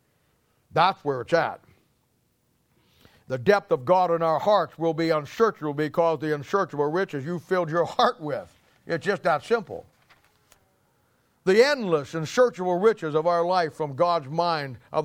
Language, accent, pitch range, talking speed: English, American, 150-180 Hz, 150 wpm